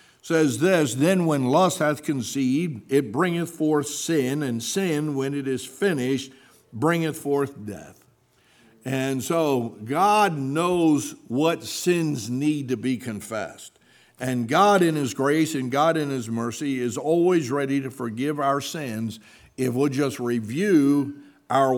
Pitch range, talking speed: 130-160 Hz, 145 wpm